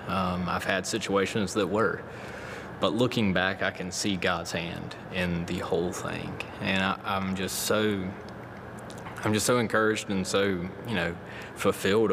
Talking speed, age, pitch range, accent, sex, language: 160 wpm, 20-39, 90-105 Hz, American, male, English